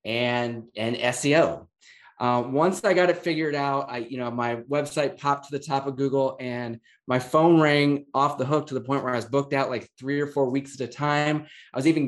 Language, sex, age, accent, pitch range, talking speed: English, male, 20-39, American, 125-150 Hz, 235 wpm